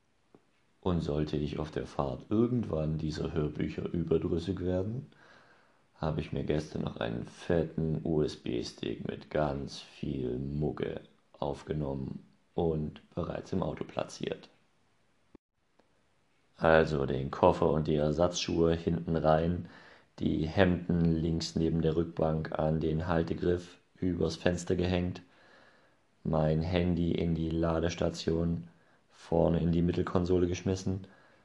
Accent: German